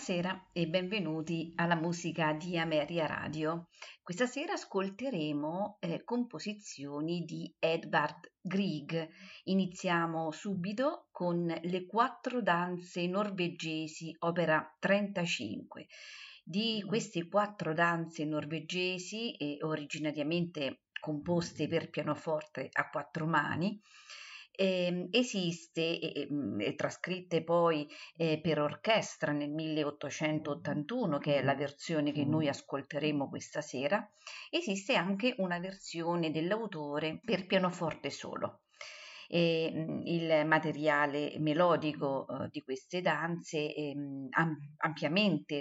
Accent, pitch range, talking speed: native, 150-185 Hz, 95 wpm